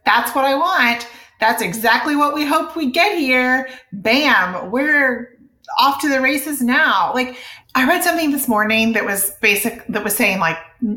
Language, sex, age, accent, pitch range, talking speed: English, female, 30-49, American, 190-270 Hz, 175 wpm